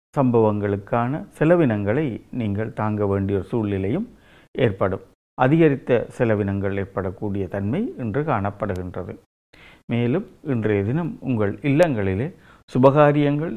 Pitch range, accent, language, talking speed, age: 100-140 Hz, native, Tamil, 85 wpm, 50-69